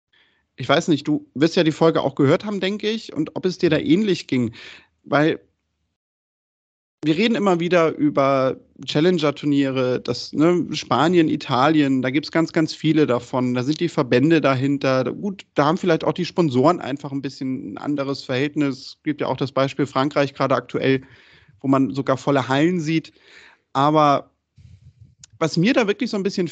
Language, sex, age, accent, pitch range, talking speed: German, male, 30-49, German, 135-185 Hz, 180 wpm